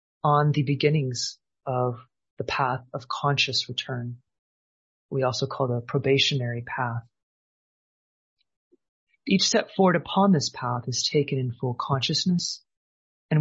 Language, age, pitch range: English, 30-49, 125-150 Hz